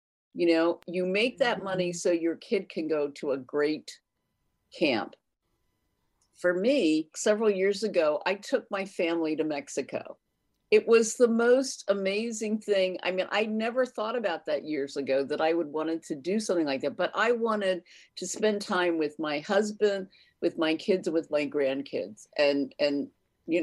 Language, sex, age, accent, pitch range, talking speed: English, female, 50-69, American, 165-235 Hz, 175 wpm